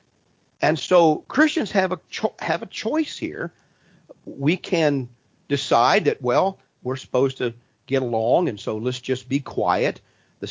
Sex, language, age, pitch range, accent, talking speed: male, English, 50-69, 125-165 Hz, American, 155 wpm